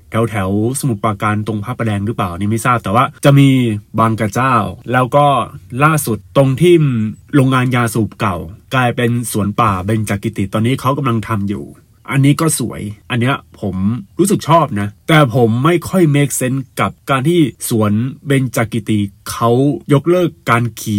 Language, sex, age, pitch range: Thai, male, 20-39, 105-140 Hz